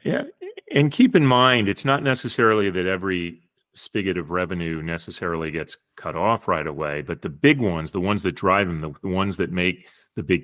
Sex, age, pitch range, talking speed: male, 30-49, 80-100 Hz, 200 wpm